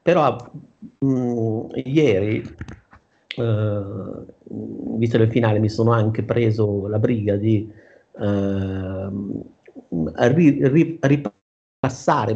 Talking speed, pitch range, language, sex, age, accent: 65 wpm, 105-130 Hz, Italian, male, 50-69, native